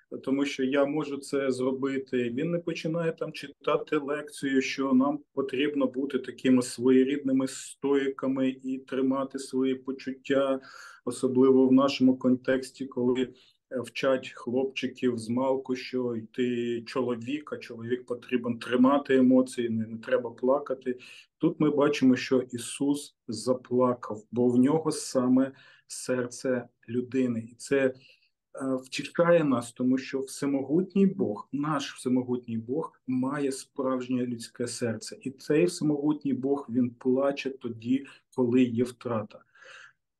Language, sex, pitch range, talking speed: Ukrainian, male, 125-140 Hz, 120 wpm